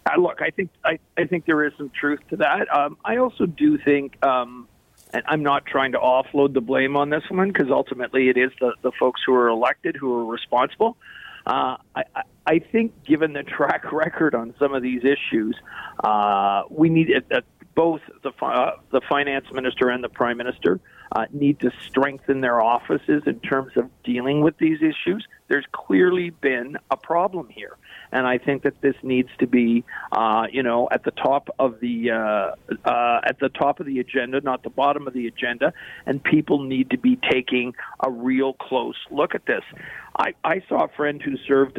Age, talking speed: 50-69, 200 wpm